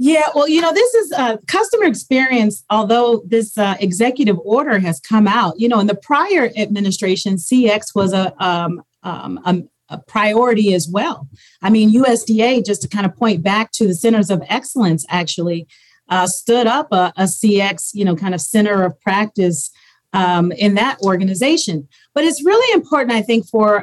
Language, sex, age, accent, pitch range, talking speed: English, female, 40-59, American, 190-245 Hz, 180 wpm